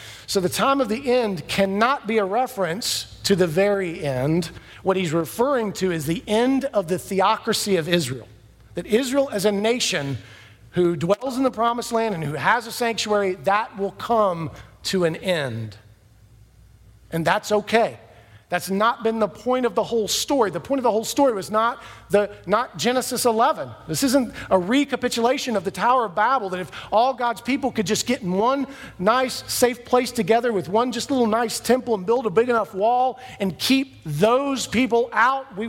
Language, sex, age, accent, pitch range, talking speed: English, male, 40-59, American, 150-235 Hz, 190 wpm